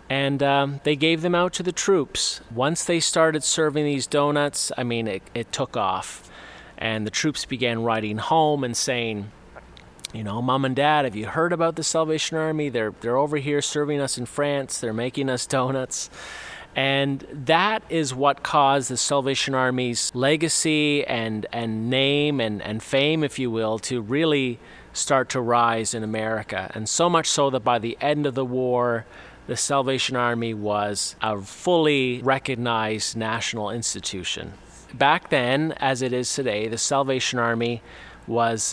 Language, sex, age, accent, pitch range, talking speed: English, male, 30-49, American, 115-145 Hz, 165 wpm